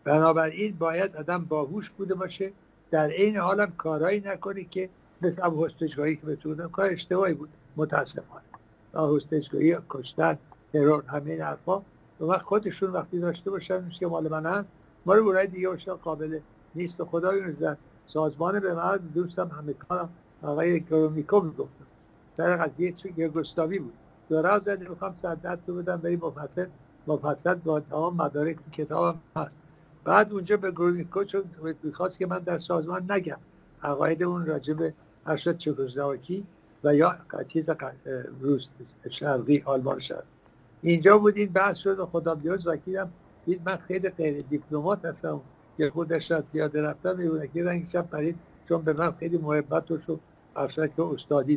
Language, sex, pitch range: Persian, male, 155-185 Hz